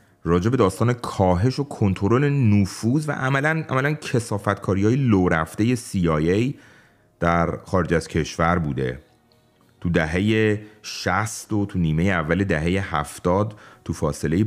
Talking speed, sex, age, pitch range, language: 120 wpm, male, 30-49, 85-105 Hz, Persian